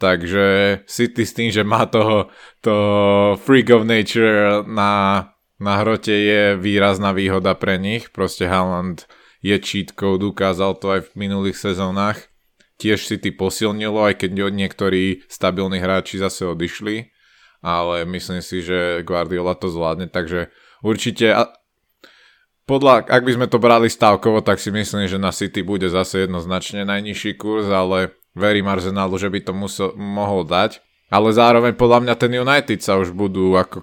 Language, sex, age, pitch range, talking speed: Slovak, male, 20-39, 95-110 Hz, 150 wpm